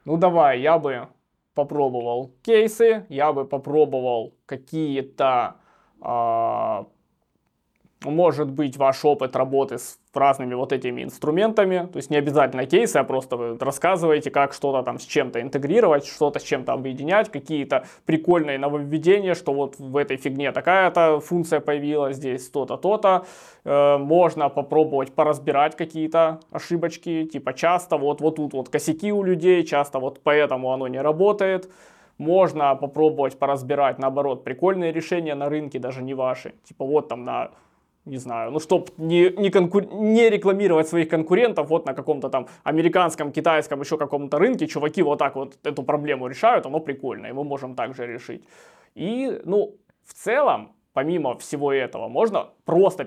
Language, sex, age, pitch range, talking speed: Russian, male, 20-39, 135-170 Hz, 145 wpm